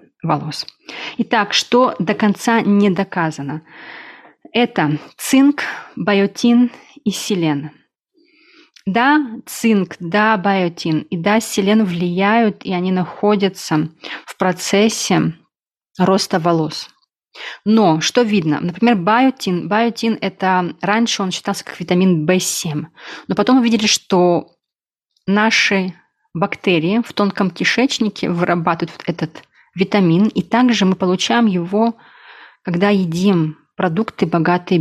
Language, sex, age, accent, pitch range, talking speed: Russian, female, 30-49, native, 170-220 Hz, 105 wpm